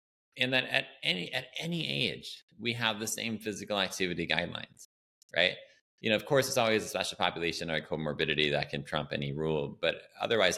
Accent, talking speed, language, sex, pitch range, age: American, 185 wpm, English, male, 85-125 Hz, 20-39